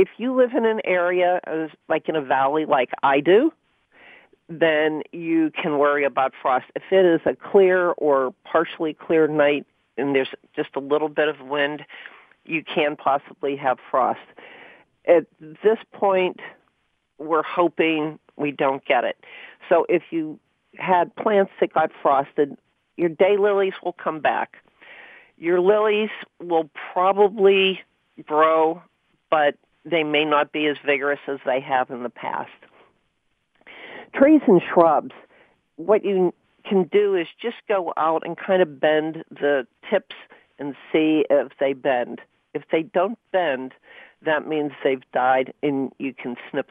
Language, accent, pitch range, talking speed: English, American, 145-190 Hz, 150 wpm